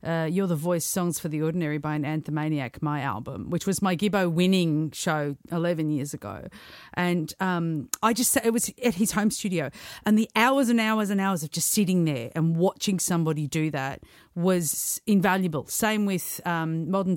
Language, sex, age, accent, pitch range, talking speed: English, female, 40-59, Australian, 155-195 Hz, 190 wpm